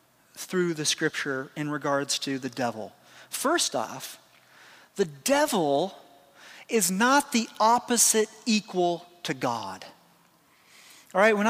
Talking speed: 115 wpm